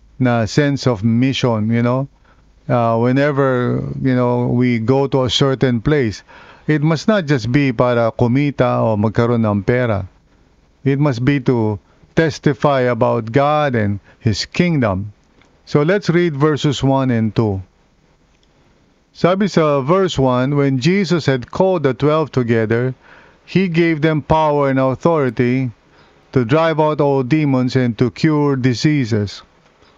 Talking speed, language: 140 wpm, English